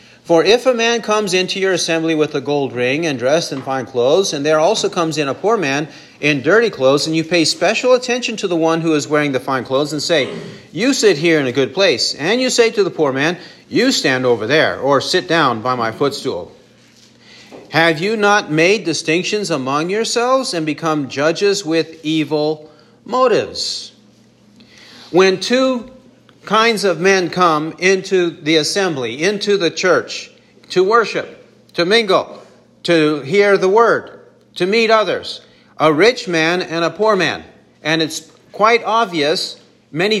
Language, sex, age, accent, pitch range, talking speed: English, male, 40-59, American, 150-205 Hz, 175 wpm